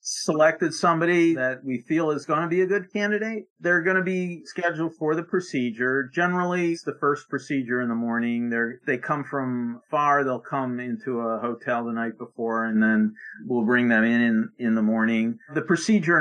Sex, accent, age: male, American, 50-69